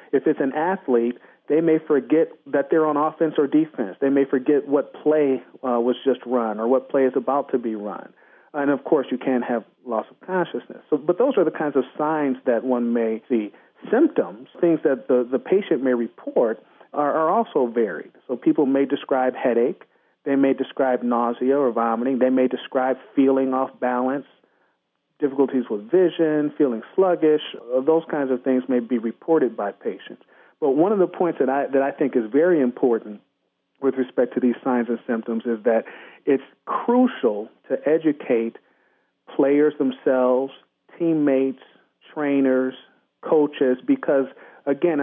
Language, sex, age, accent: English, male, 40-59, American